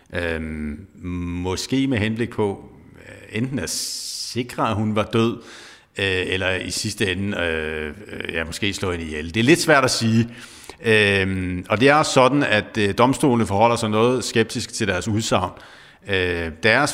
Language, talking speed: Danish, 140 wpm